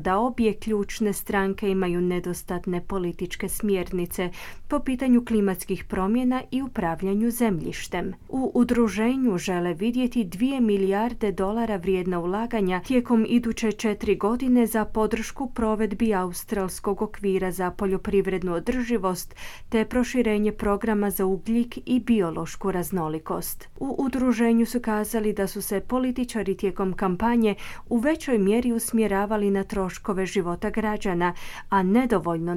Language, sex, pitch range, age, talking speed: Croatian, female, 190-235 Hz, 30-49, 120 wpm